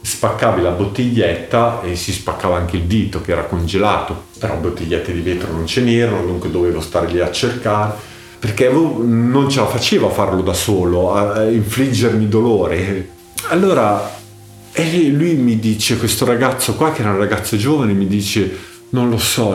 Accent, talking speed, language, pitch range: native, 165 wpm, Italian, 85-110 Hz